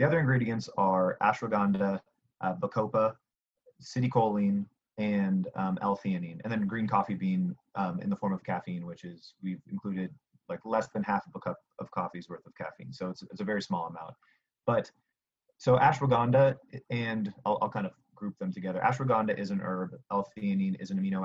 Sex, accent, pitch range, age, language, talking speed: male, American, 100-130 Hz, 30-49, English, 180 wpm